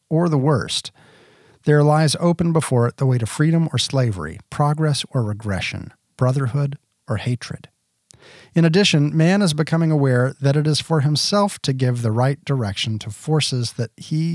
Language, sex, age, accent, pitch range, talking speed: English, male, 40-59, American, 120-155 Hz, 165 wpm